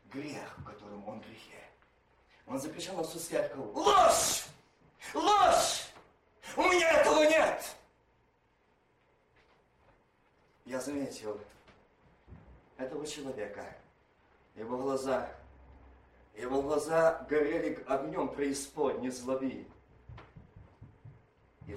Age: 40-59